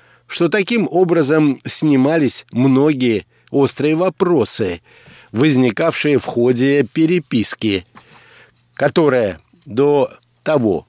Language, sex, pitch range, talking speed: Russian, male, 125-160 Hz, 75 wpm